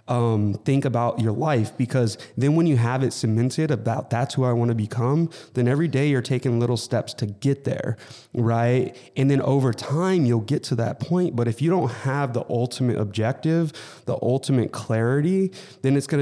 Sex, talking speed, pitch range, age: male, 195 wpm, 115-135 Hz, 20-39